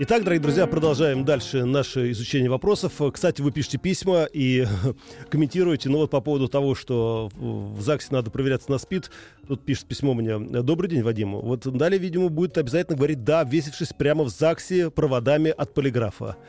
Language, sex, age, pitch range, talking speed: Russian, male, 40-59, 120-160 Hz, 170 wpm